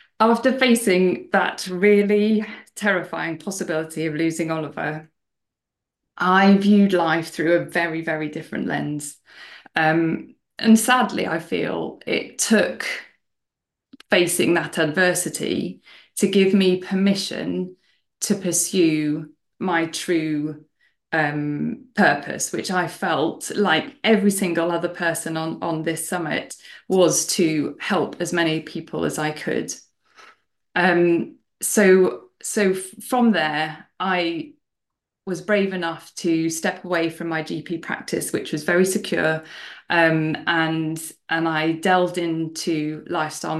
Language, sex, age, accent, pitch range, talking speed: English, female, 20-39, British, 160-190 Hz, 120 wpm